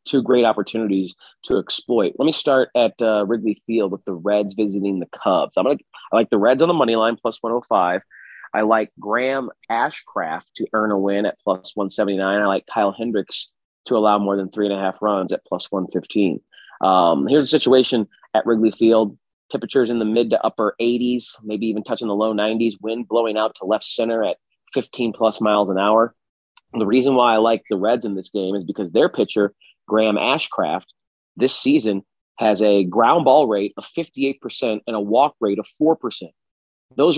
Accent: American